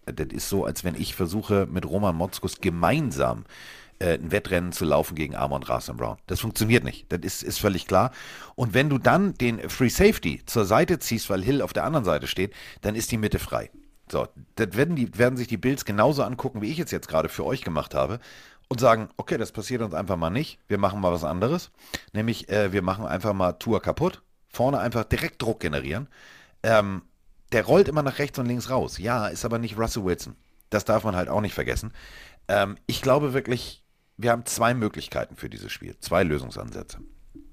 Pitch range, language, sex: 90-120 Hz, German, male